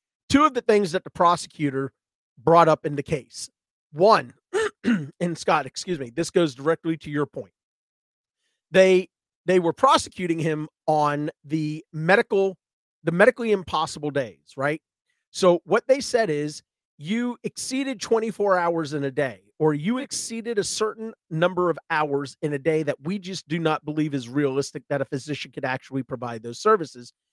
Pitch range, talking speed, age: 145-190 Hz, 165 wpm, 40-59